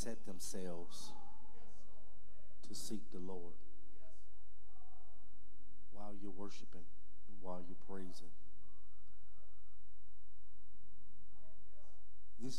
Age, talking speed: 50-69, 65 wpm